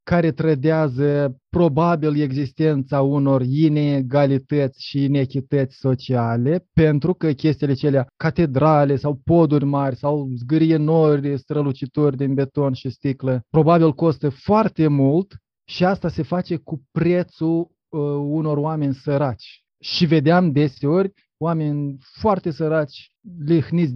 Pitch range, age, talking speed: 130-155 Hz, 20-39, 115 wpm